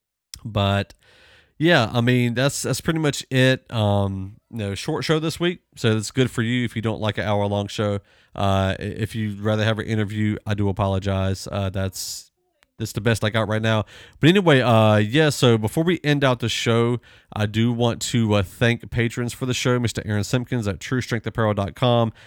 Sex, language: male, English